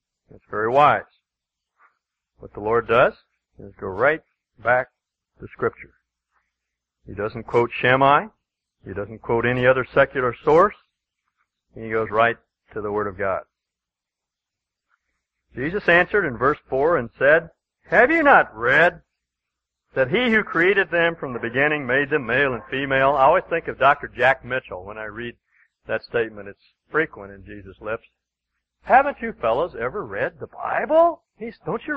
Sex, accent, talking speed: male, American, 155 wpm